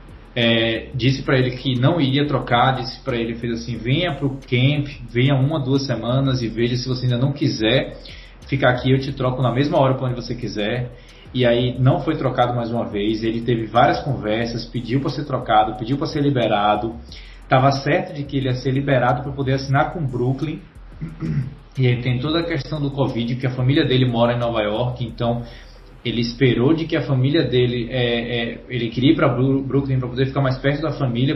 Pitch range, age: 120-140 Hz, 20-39